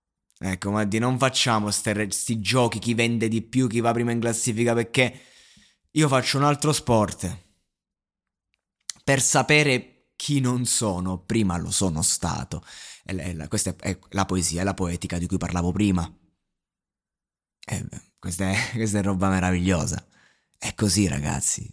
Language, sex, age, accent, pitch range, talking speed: Italian, male, 20-39, native, 90-120 Hz, 145 wpm